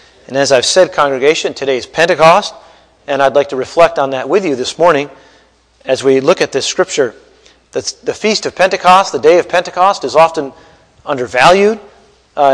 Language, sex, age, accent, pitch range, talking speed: English, male, 40-59, American, 140-210 Hz, 180 wpm